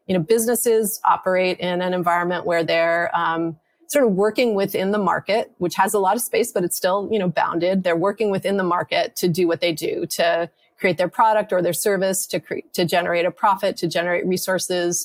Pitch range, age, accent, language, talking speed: 170-200 Hz, 30-49, American, English, 210 wpm